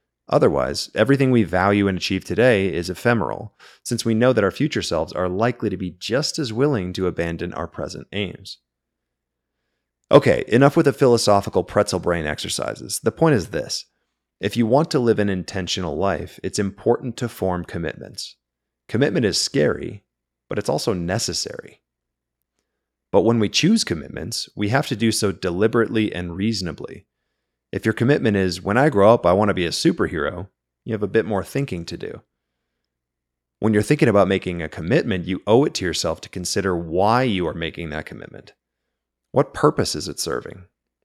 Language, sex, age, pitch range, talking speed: English, male, 30-49, 80-110 Hz, 175 wpm